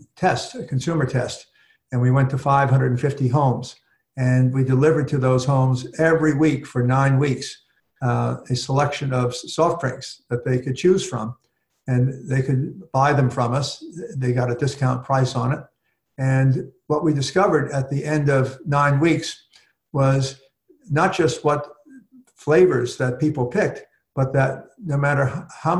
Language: English